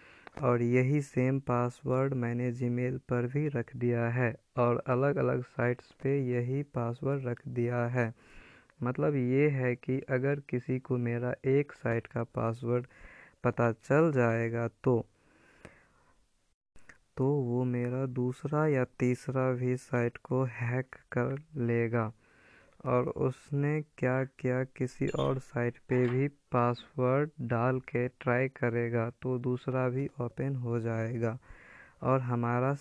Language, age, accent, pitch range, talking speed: Hindi, 20-39, native, 120-135 Hz, 130 wpm